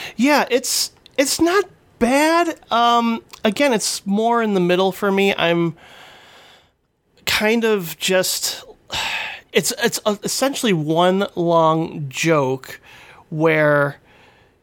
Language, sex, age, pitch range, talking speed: English, male, 30-49, 150-185 Hz, 105 wpm